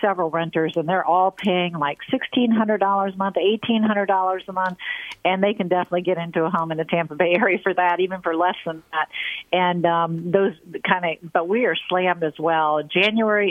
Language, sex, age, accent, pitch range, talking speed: English, female, 50-69, American, 165-200 Hz, 200 wpm